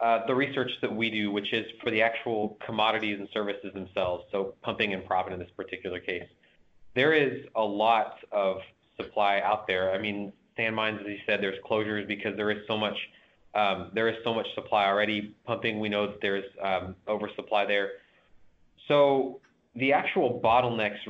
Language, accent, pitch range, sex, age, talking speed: English, American, 100-115 Hz, male, 20-39, 180 wpm